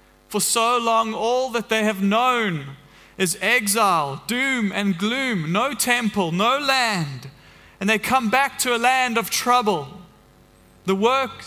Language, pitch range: English, 160-240 Hz